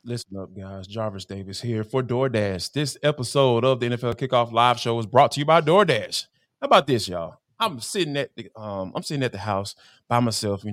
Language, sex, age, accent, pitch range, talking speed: English, male, 20-39, American, 120-200 Hz, 220 wpm